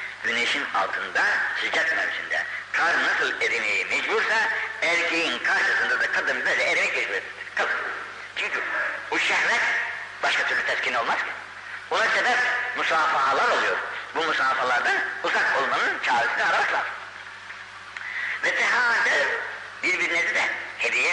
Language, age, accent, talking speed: Turkish, 60-79, native, 115 wpm